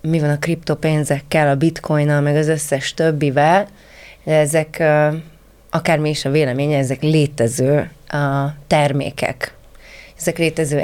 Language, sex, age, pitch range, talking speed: Hungarian, female, 30-49, 145-170 Hz, 120 wpm